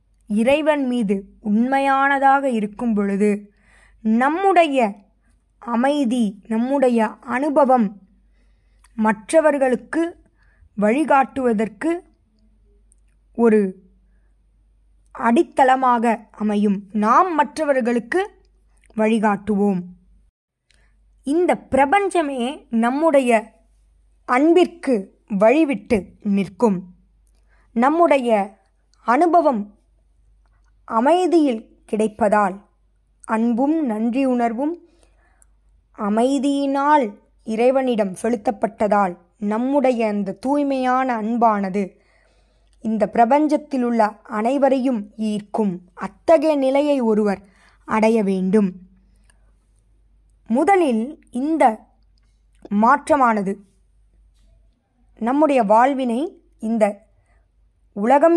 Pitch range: 205-275 Hz